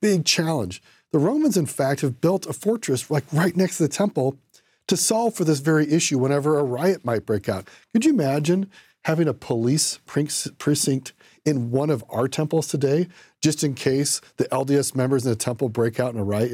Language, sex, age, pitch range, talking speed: English, male, 40-59, 125-160 Hz, 200 wpm